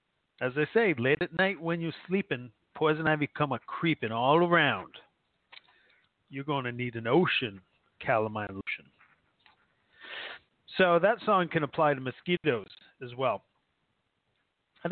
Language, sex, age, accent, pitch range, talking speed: English, male, 40-59, American, 125-170 Hz, 135 wpm